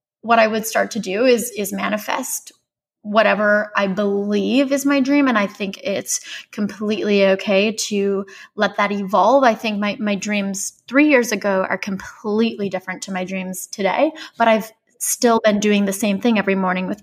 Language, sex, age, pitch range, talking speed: English, female, 20-39, 205-240 Hz, 180 wpm